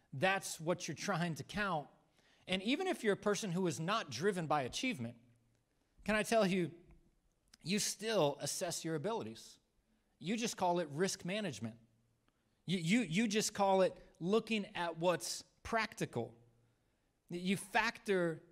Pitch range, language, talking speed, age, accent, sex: 155-215 Hz, English, 145 wpm, 40-59, American, male